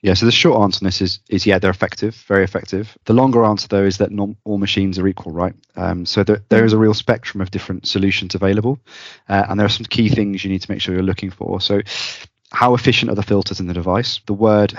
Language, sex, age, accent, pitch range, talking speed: English, male, 30-49, British, 95-110 Hz, 260 wpm